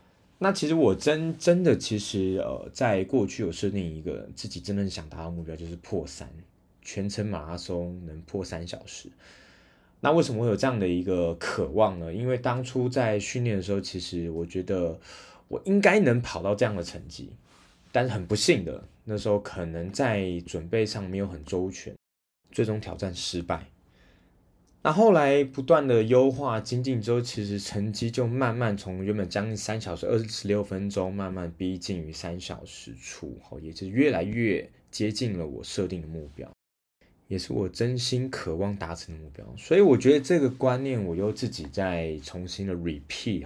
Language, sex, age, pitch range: Chinese, male, 20-39, 85-120 Hz